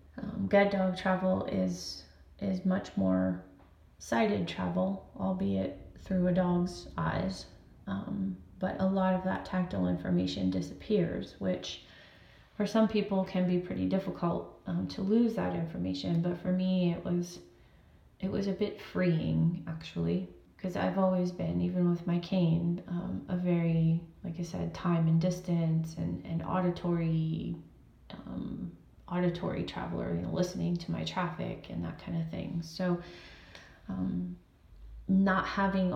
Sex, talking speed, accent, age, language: female, 145 wpm, American, 20-39, English